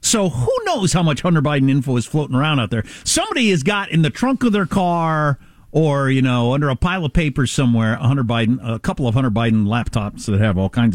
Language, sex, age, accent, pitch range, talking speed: English, male, 50-69, American, 115-180 Hz, 230 wpm